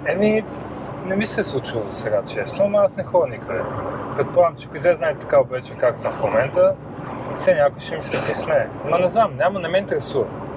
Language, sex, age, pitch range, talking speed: Bulgarian, male, 30-49, 130-170 Hz, 210 wpm